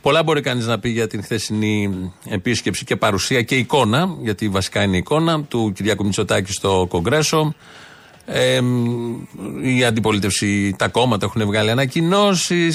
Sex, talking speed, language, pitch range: male, 140 wpm, Greek, 110-150 Hz